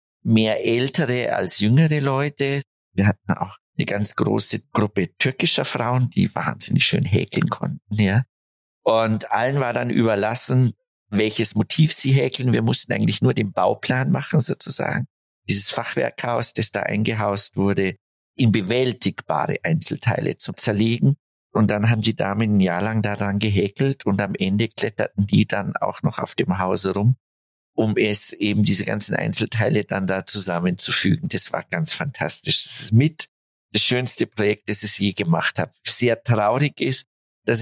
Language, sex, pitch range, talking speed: German, male, 100-120 Hz, 155 wpm